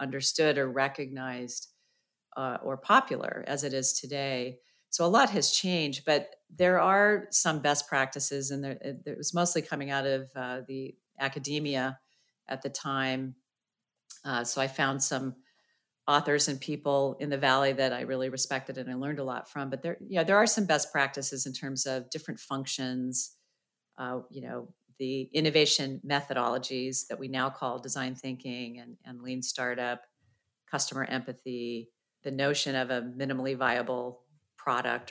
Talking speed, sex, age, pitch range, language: 160 wpm, female, 40-59, 130-145 Hz, English